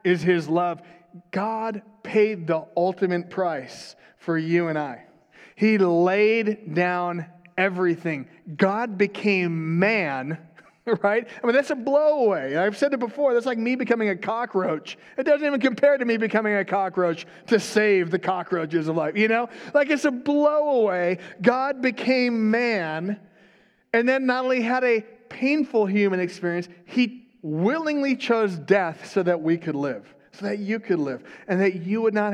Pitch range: 170-220 Hz